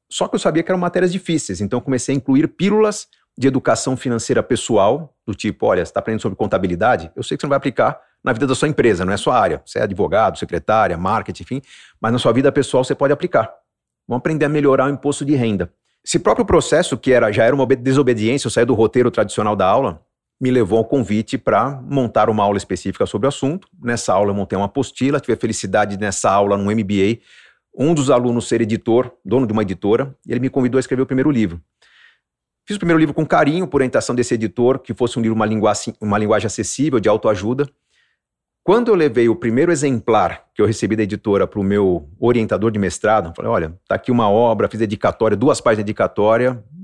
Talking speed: 225 wpm